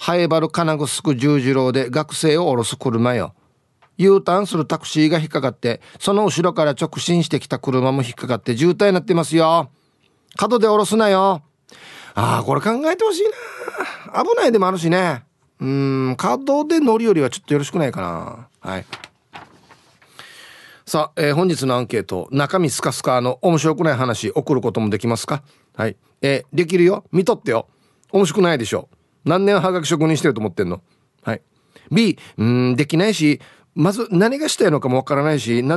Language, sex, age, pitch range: Japanese, male, 30-49, 130-195 Hz